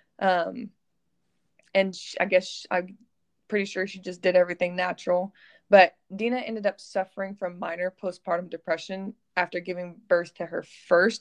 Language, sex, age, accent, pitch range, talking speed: English, female, 20-39, American, 175-205 Hz, 145 wpm